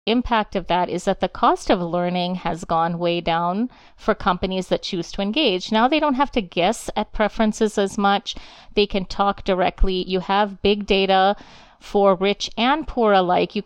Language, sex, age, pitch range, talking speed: English, female, 40-59, 185-230 Hz, 190 wpm